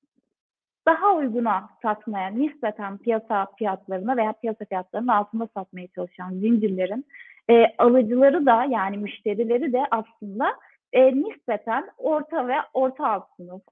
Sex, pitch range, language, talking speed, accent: female, 210-290 Hz, Turkish, 120 wpm, native